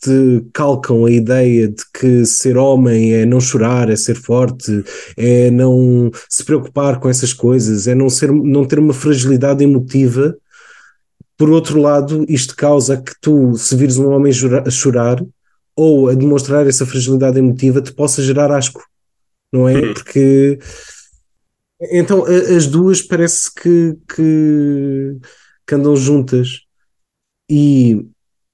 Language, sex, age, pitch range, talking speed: Portuguese, male, 20-39, 120-145 Hz, 135 wpm